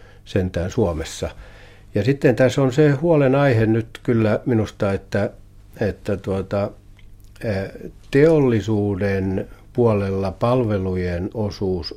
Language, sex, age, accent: Finnish, male, 60-79, native